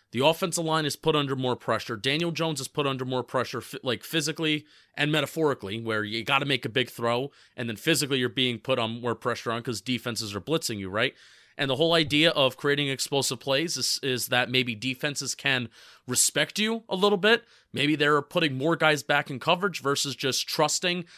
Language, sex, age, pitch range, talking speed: English, male, 30-49, 130-165 Hz, 205 wpm